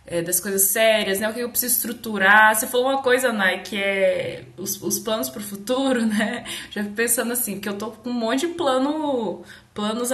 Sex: female